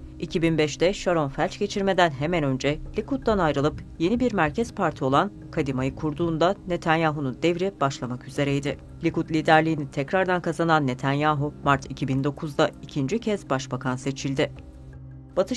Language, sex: Turkish, female